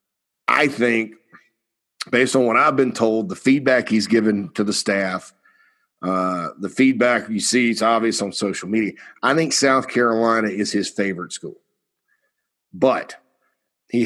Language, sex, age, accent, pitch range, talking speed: English, male, 50-69, American, 105-125 Hz, 150 wpm